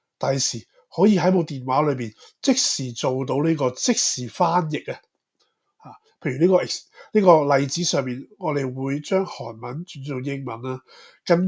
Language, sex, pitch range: Chinese, male, 130-175 Hz